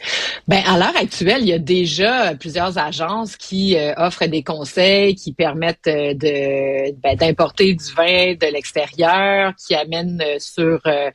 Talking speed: 145 wpm